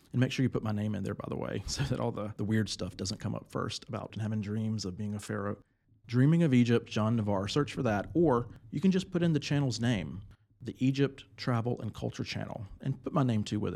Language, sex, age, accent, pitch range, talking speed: English, male, 40-59, American, 105-130 Hz, 255 wpm